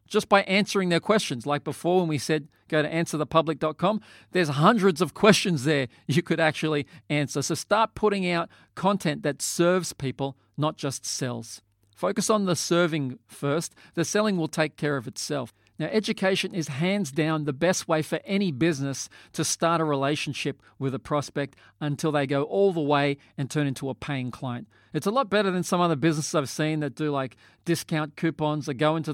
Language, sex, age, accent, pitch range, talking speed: English, male, 40-59, Australian, 135-175 Hz, 190 wpm